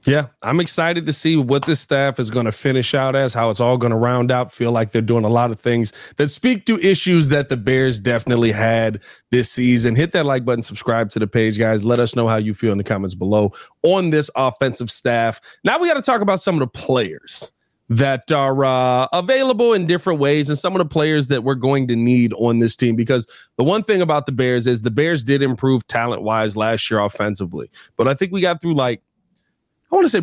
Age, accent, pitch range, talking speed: 30-49, American, 115-150 Hz, 240 wpm